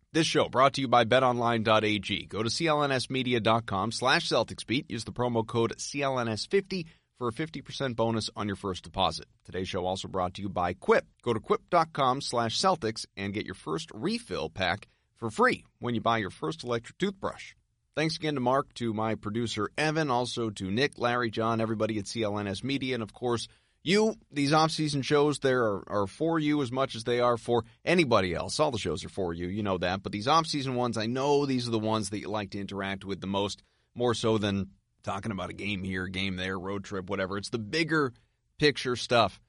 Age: 30-49